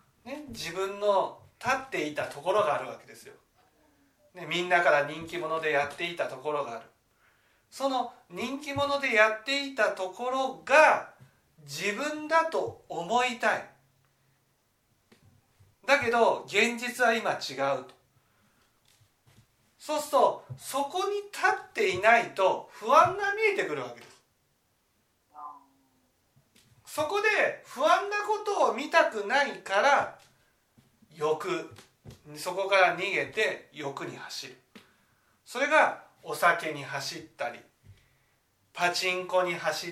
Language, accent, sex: Japanese, native, male